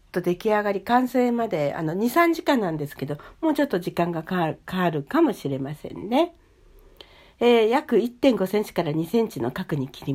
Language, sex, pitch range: Japanese, female, 160-255 Hz